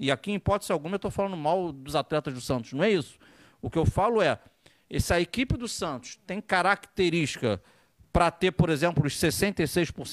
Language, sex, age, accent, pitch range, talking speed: Portuguese, male, 40-59, Brazilian, 140-180 Hz, 195 wpm